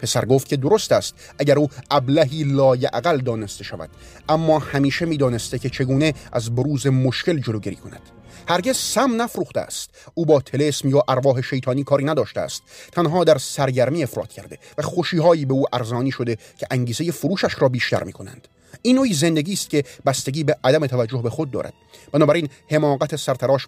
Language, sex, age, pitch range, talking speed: Persian, male, 30-49, 120-150 Hz, 170 wpm